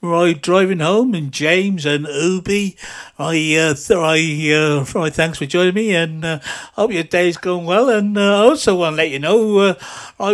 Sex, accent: male, British